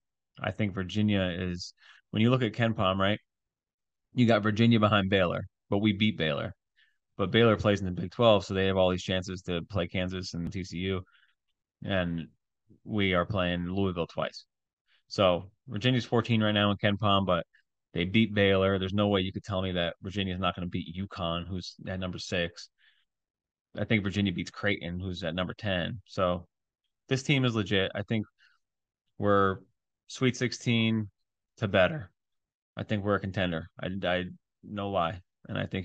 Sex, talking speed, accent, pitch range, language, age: male, 180 wpm, American, 90-110 Hz, English, 30-49